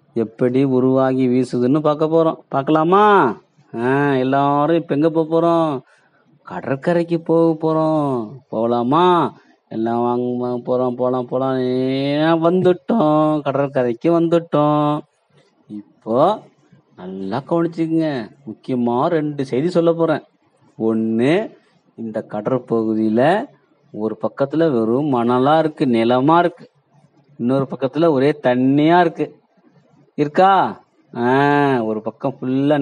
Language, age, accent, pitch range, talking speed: Tamil, 30-49, native, 120-160 Hz, 95 wpm